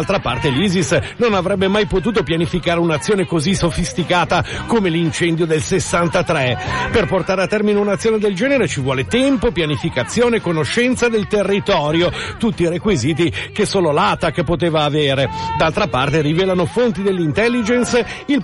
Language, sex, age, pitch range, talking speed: Italian, male, 50-69, 170-225 Hz, 140 wpm